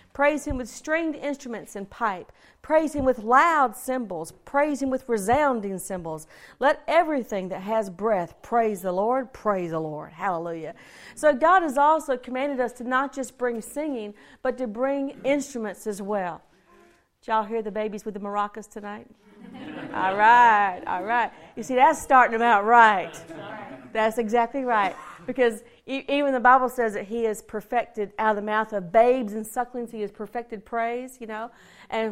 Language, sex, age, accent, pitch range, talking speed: English, female, 50-69, American, 210-275 Hz, 175 wpm